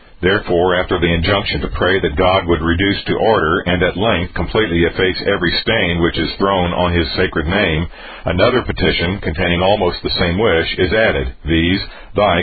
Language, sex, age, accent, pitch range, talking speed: English, male, 50-69, American, 80-95 Hz, 180 wpm